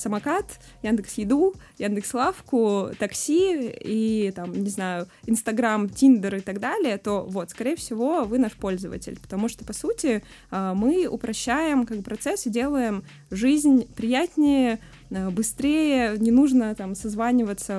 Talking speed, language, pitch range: 130 wpm, Russian, 195-240 Hz